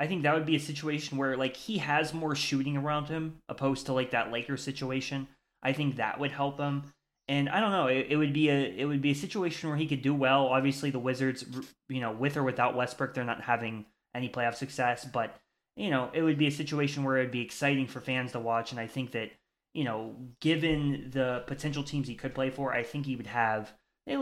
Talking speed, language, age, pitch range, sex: 240 wpm, English, 10-29, 120-145 Hz, male